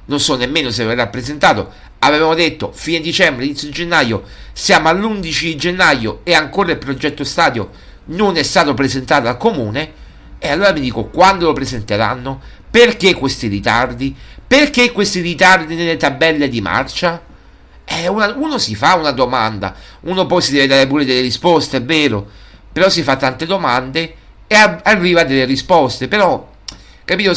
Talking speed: 160 wpm